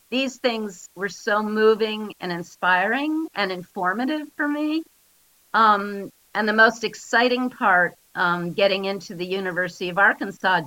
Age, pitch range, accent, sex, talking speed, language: 50-69, 175-215 Hz, American, female, 135 wpm, English